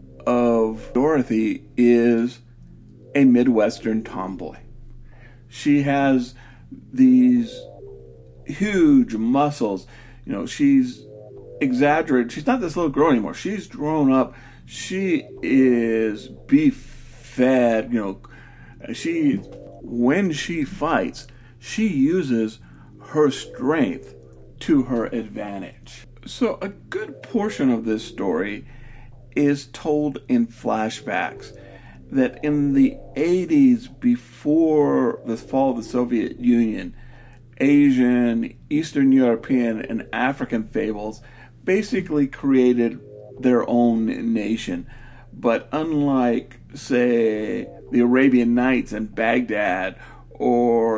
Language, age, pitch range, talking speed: English, 50-69, 115-145 Hz, 100 wpm